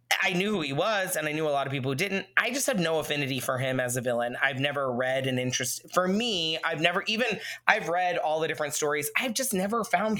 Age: 20-39